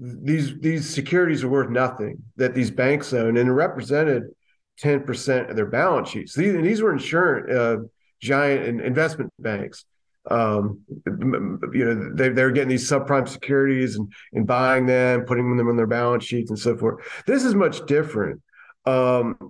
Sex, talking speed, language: male, 170 wpm, English